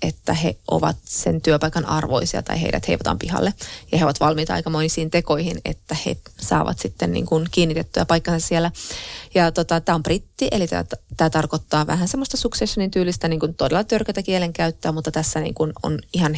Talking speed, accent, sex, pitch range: 170 wpm, native, female, 155-185 Hz